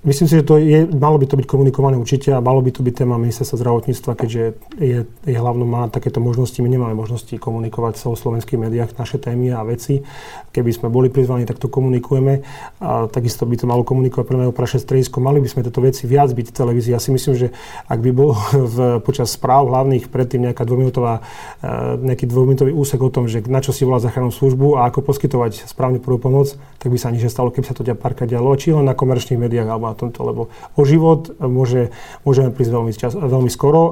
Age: 30-49